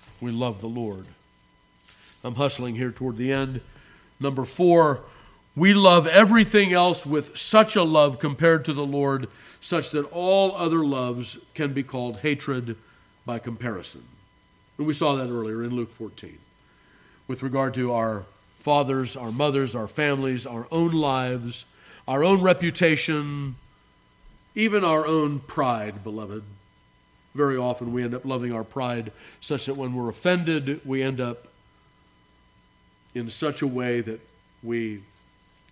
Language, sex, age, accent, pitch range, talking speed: English, male, 50-69, American, 115-145 Hz, 145 wpm